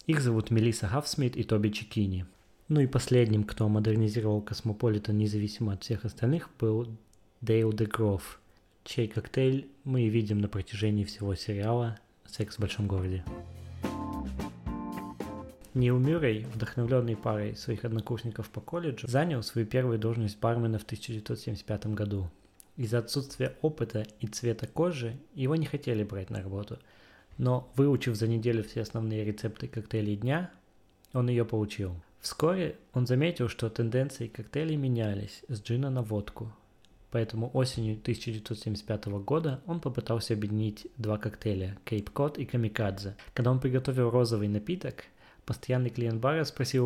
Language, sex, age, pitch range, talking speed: Russian, male, 20-39, 105-125 Hz, 135 wpm